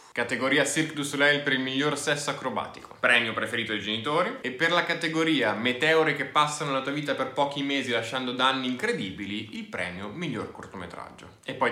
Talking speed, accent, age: 180 wpm, native, 10-29